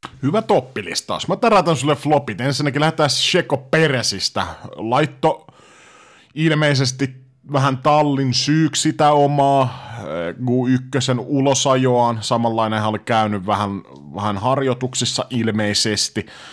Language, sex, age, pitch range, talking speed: Finnish, male, 30-49, 110-140 Hz, 100 wpm